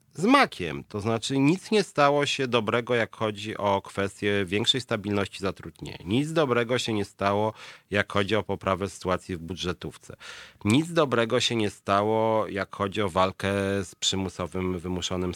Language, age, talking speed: Polish, 40-59, 155 wpm